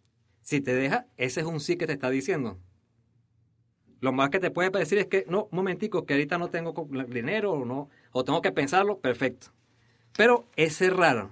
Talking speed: 190 wpm